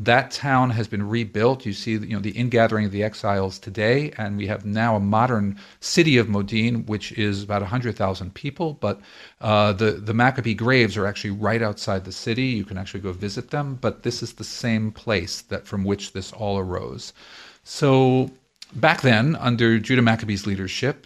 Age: 50-69